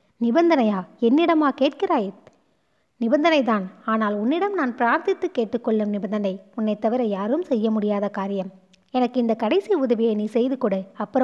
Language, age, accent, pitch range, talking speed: Tamil, 20-39, native, 205-265 Hz, 125 wpm